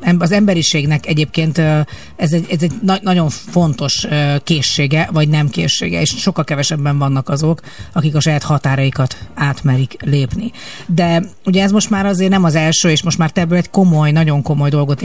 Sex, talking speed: female, 175 wpm